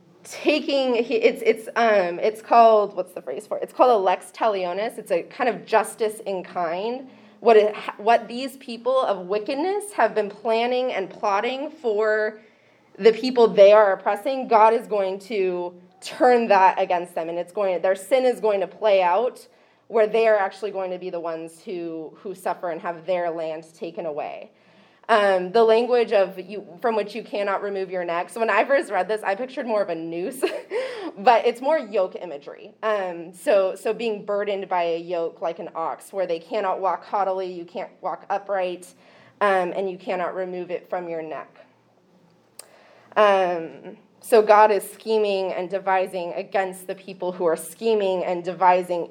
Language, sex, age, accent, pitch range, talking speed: English, female, 20-39, American, 180-225 Hz, 185 wpm